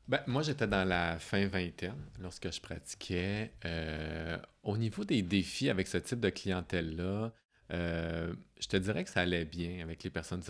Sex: male